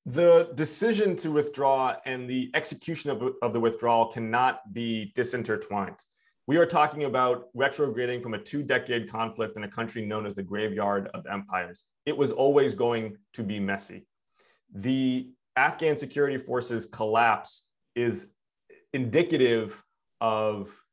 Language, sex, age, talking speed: English, male, 30-49, 140 wpm